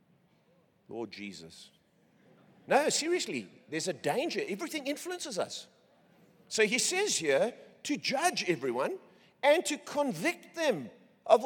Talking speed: 115 wpm